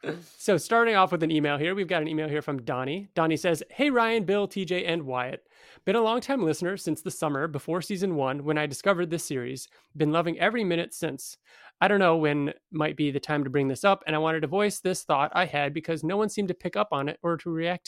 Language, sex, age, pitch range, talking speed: English, male, 30-49, 145-185 Hz, 250 wpm